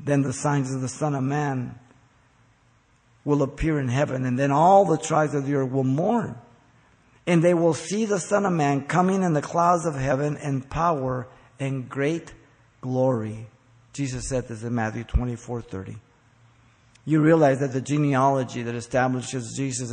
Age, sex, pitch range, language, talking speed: 50-69, male, 120-140 Hz, English, 170 wpm